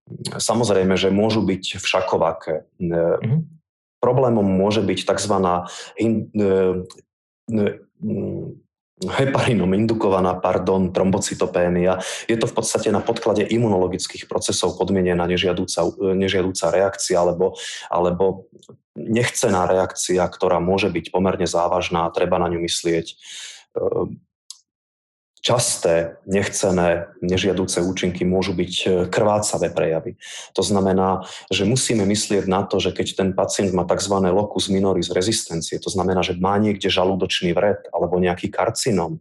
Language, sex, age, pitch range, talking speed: Slovak, male, 20-39, 90-100 Hz, 110 wpm